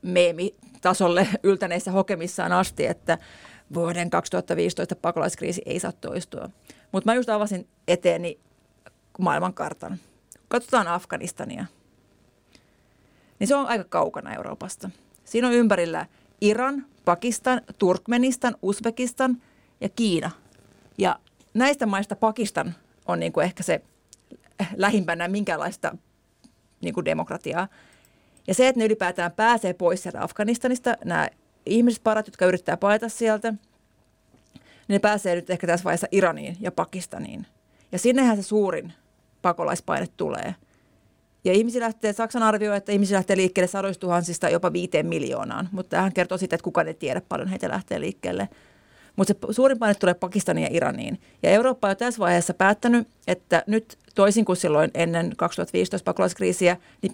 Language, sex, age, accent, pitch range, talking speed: Finnish, female, 30-49, native, 175-225 Hz, 130 wpm